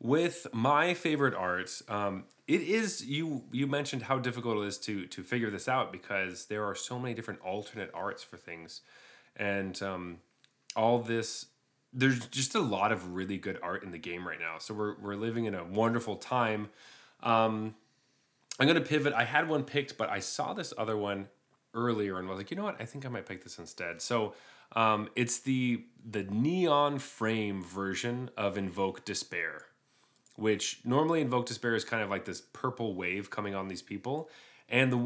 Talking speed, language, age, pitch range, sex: 190 wpm, English, 20-39, 100-130 Hz, male